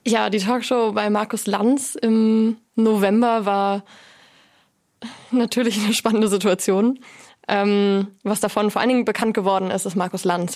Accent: German